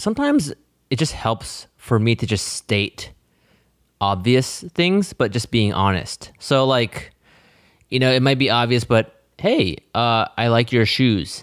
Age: 20-39